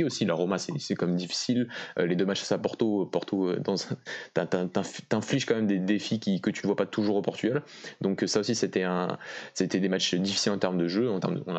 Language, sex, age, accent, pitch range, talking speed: French, male, 20-39, French, 90-105 Hz, 240 wpm